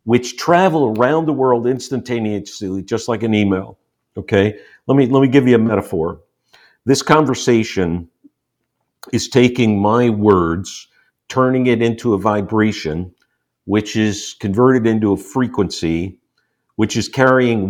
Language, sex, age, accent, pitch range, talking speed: English, male, 50-69, American, 105-130 Hz, 130 wpm